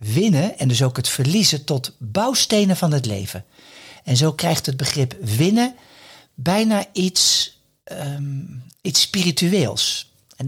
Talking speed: 130 wpm